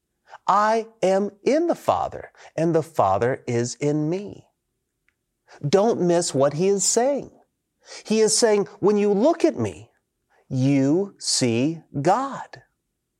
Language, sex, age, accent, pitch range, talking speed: English, male, 40-59, American, 135-185 Hz, 125 wpm